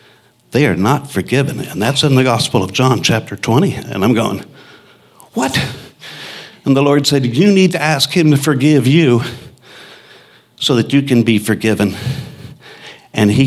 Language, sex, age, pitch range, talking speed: English, male, 60-79, 130-155 Hz, 175 wpm